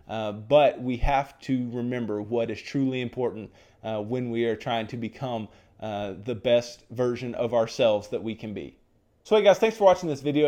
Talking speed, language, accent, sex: 200 wpm, English, American, male